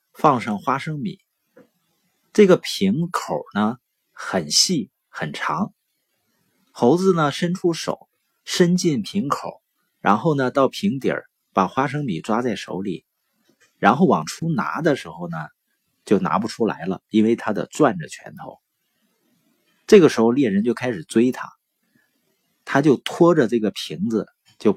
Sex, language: male, Chinese